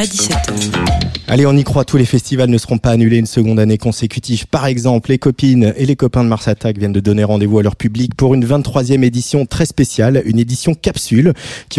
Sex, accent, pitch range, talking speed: male, French, 105-135 Hz, 220 wpm